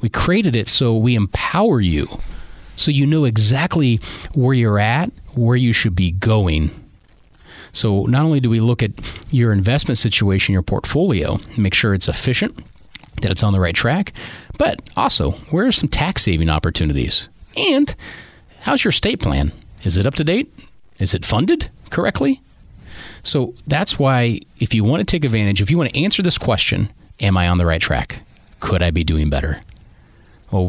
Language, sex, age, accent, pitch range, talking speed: English, male, 40-59, American, 95-130 Hz, 175 wpm